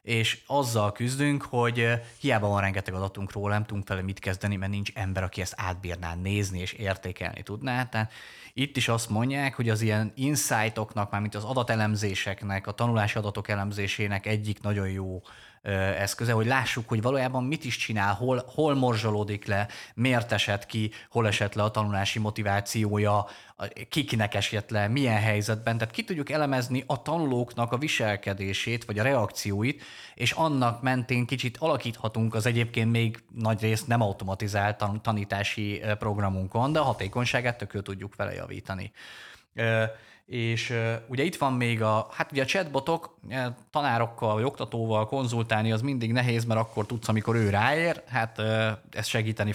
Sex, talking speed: male, 155 wpm